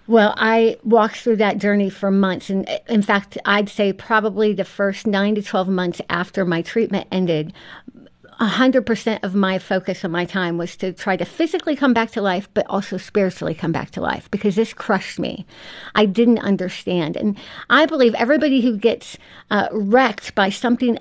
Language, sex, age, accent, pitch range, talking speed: English, female, 50-69, American, 190-235 Hz, 185 wpm